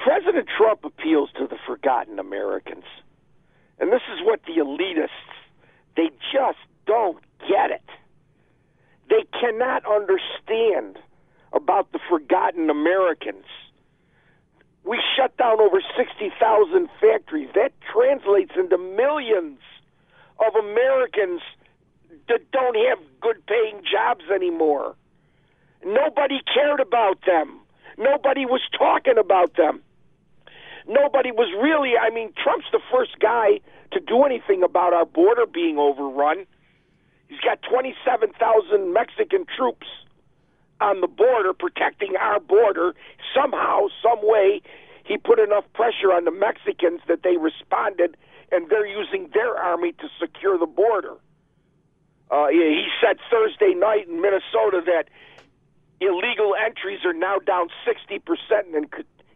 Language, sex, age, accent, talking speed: English, male, 50-69, American, 120 wpm